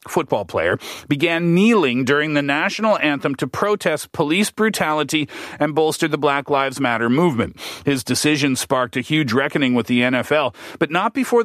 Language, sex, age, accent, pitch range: Korean, male, 40-59, American, 130-175 Hz